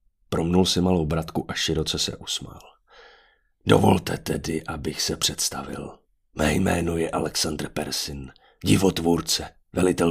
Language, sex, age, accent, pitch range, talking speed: Czech, male, 40-59, native, 85-110 Hz, 120 wpm